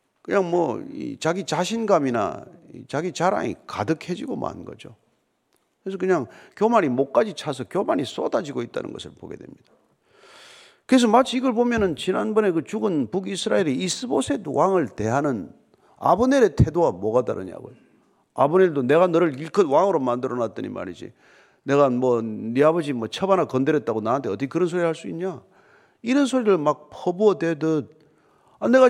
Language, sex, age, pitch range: Korean, male, 40-59, 150-210 Hz